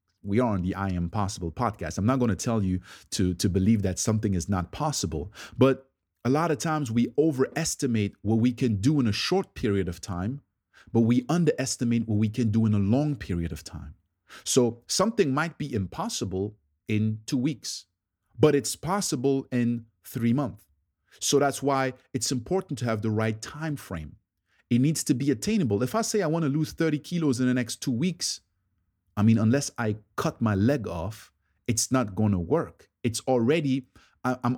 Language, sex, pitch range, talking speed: English, male, 95-140 Hz, 195 wpm